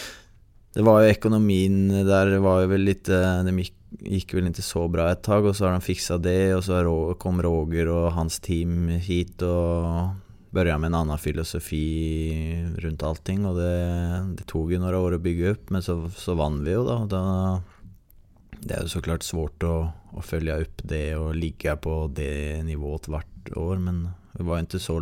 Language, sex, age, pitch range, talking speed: Swedish, male, 20-39, 80-95 Hz, 185 wpm